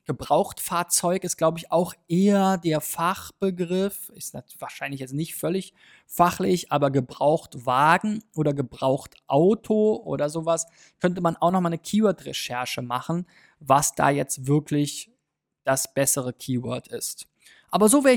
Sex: male